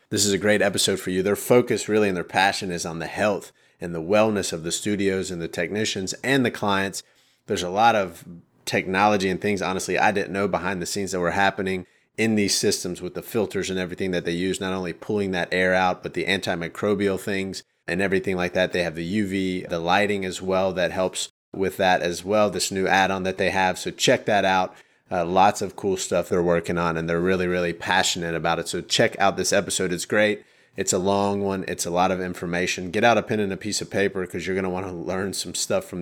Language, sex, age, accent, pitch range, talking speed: English, male, 30-49, American, 90-100 Hz, 240 wpm